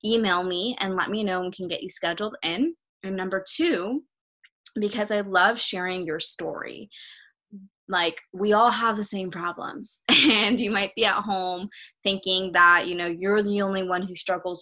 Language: English